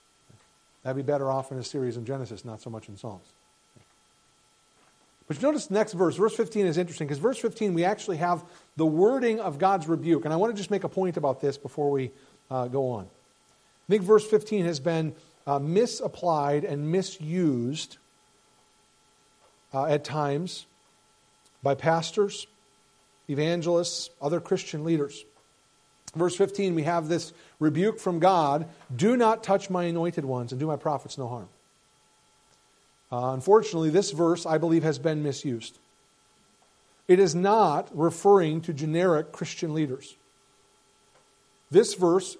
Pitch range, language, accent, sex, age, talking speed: 140-185 Hz, English, American, male, 50-69, 155 wpm